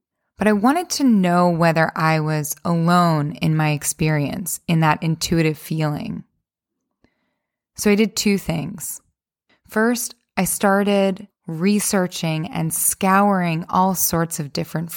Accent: American